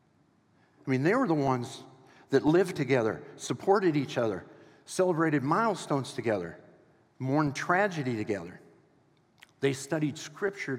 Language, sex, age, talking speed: English, male, 50-69, 115 wpm